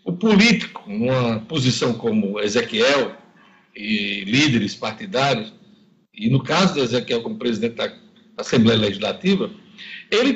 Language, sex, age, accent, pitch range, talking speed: Portuguese, male, 60-79, Brazilian, 175-230 Hz, 115 wpm